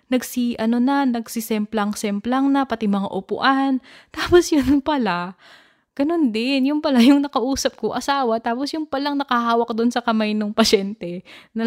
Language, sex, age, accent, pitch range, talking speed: Filipino, female, 20-39, native, 180-235 Hz, 155 wpm